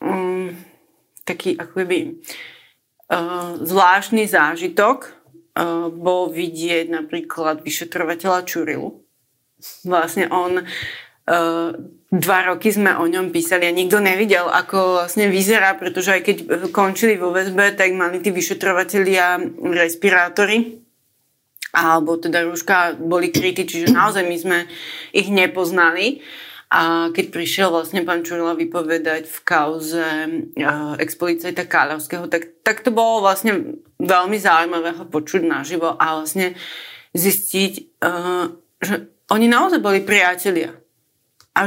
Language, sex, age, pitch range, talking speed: Slovak, female, 30-49, 165-200 Hz, 115 wpm